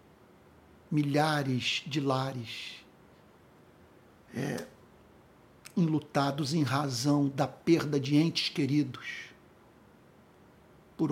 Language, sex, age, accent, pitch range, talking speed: Portuguese, male, 60-79, Brazilian, 135-185 Hz, 65 wpm